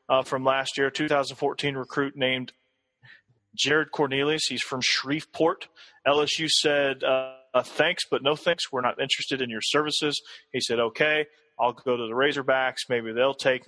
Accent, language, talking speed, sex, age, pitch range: American, English, 160 wpm, male, 30-49, 125-145 Hz